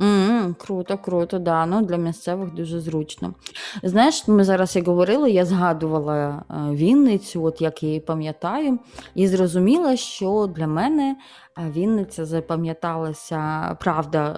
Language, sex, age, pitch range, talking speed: Ukrainian, female, 20-39, 150-180 Hz, 120 wpm